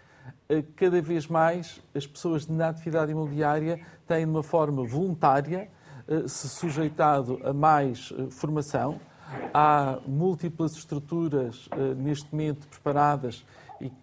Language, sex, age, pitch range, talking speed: Portuguese, male, 50-69, 135-160 Hz, 110 wpm